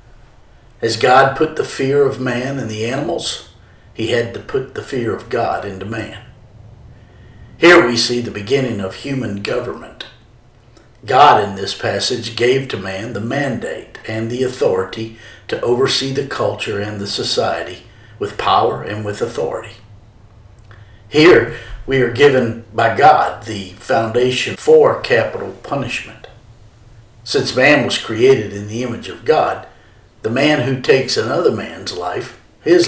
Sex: male